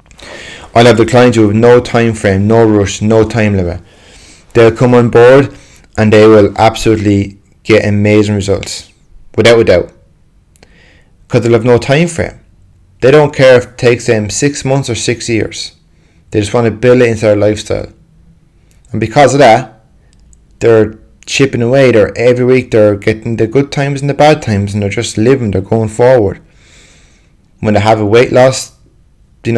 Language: English